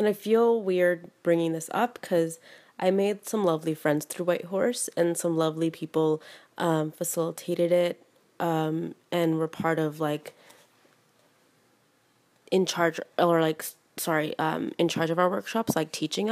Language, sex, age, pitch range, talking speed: English, female, 20-39, 165-195 Hz, 155 wpm